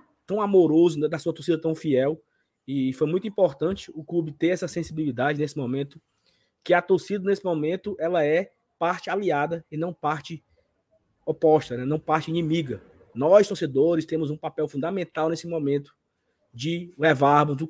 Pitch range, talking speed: 150-190 Hz, 160 wpm